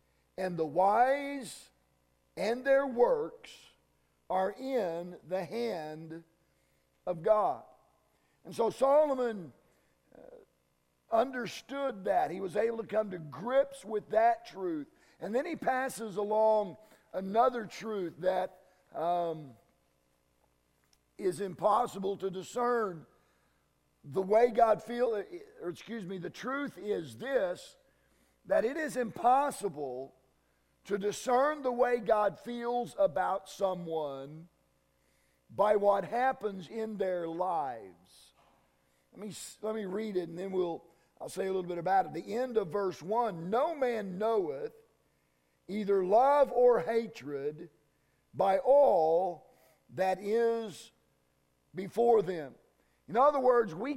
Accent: American